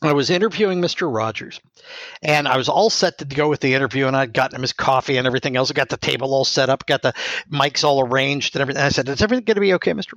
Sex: male